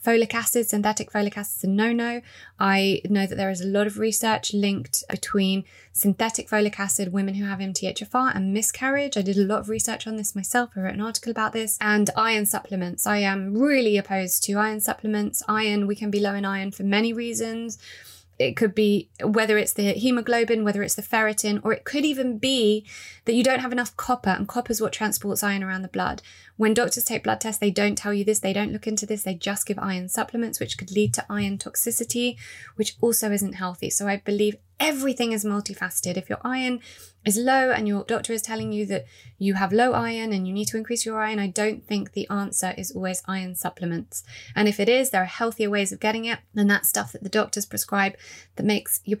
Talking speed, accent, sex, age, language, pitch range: 225 wpm, British, female, 20-39, English, 200-230 Hz